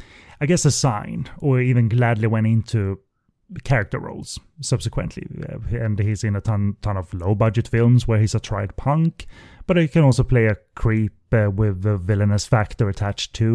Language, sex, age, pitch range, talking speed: English, male, 30-49, 100-120 Hz, 175 wpm